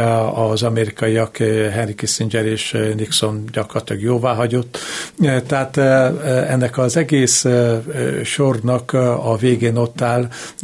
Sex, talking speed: male, 95 wpm